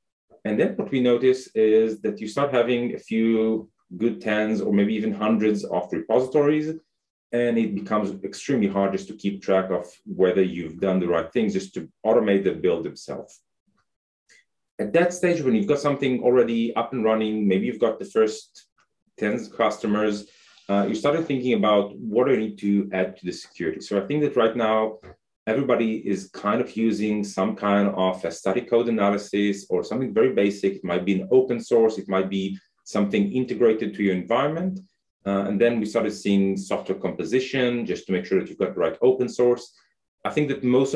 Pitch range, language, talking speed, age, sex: 100-125 Hz, English, 195 wpm, 30-49, male